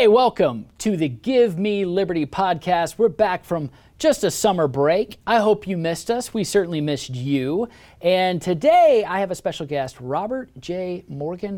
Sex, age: male, 40-59